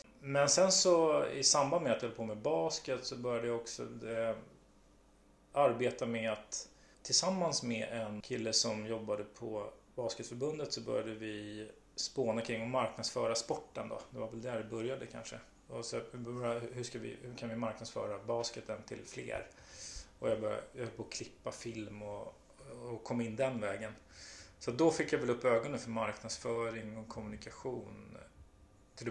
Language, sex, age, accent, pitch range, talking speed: Swedish, male, 30-49, native, 110-125 Hz, 170 wpm